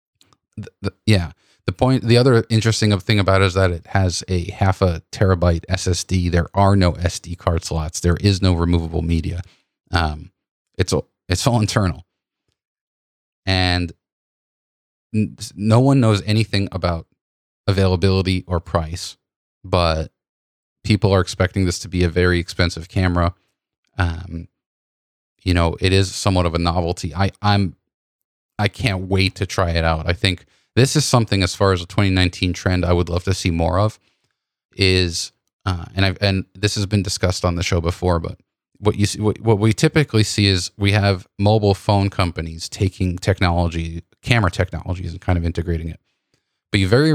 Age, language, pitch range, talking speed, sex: 30-49, English, 85-100 Hz, 165 wpm, male